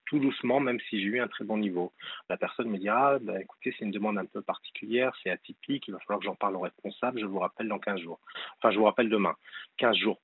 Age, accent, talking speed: 40-59, French, 280 wpm